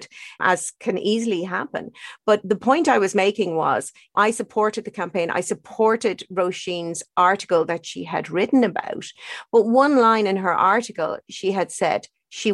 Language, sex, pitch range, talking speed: English, female, 195-260 Hz, 165 wpm